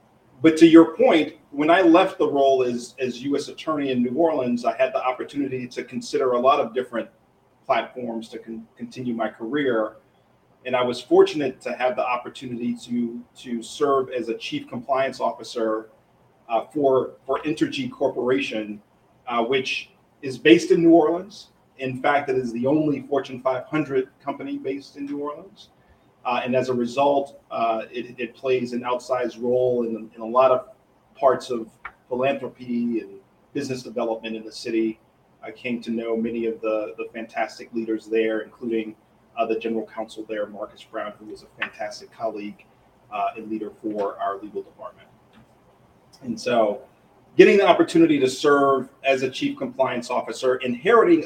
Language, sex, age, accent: English, male, 40-59, American